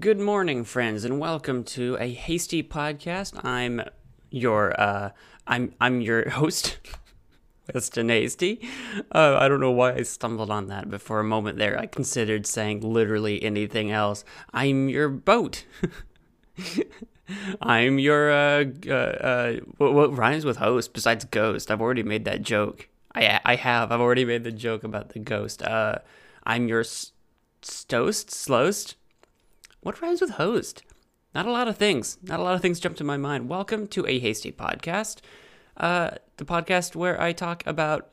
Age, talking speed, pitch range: 20-39, 165 wpm, 110-165 Hz